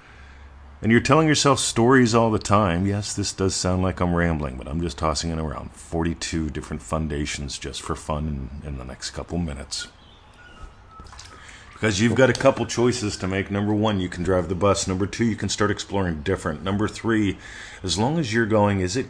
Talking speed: 200 wpm